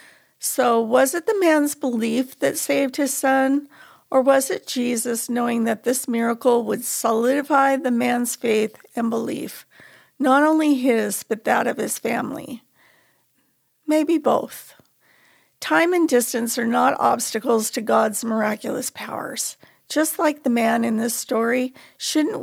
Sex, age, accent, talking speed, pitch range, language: female, 50-69, American, 140 wpm, 235-275 Hz, English